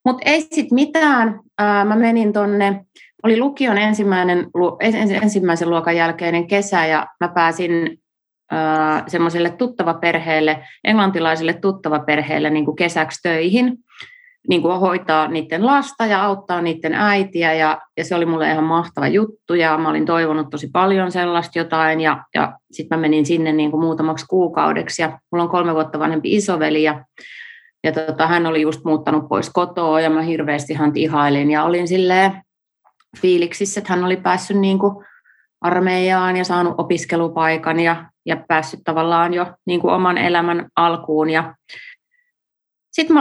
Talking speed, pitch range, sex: 145 wpm, 160-200 Hz, female